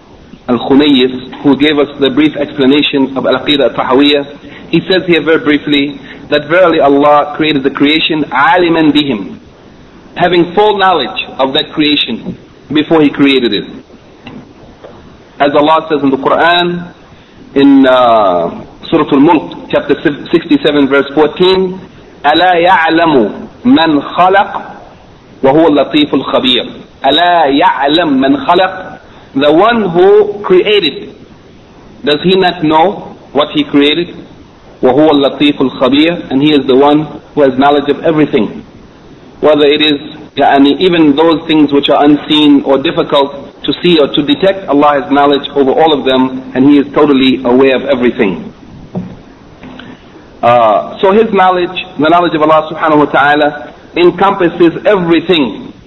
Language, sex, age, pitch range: English, male, 40-59, 140-175 Hz